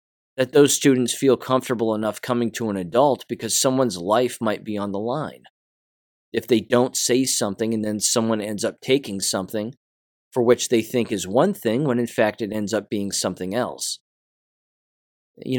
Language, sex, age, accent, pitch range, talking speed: English, male, 20-39, American, 105-130 Hz, 180 wpm